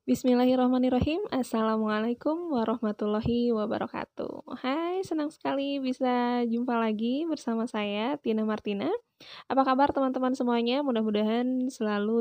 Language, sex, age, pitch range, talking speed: Indonesian, female, 10-29, 215-255 Hz, 100 wpm